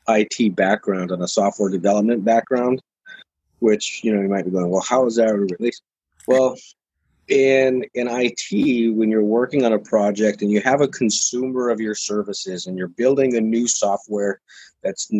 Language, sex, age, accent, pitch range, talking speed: English, male, 30-49, American, 105-130 Hz, 175 wpm